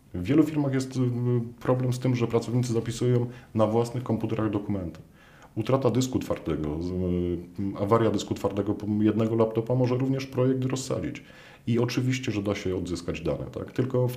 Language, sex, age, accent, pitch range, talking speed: Polish, male, 40-59, native, 95-125 Hz, 155 wpm